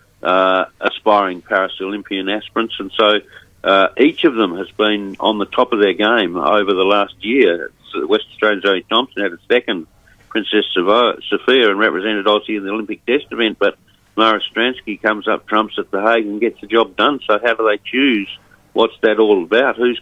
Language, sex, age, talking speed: English, male, 50-69, 190 wpm